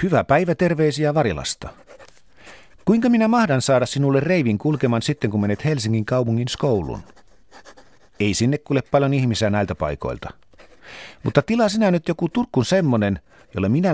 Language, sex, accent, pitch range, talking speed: Finnish, male, native, 110-155 Hz, 140 wpm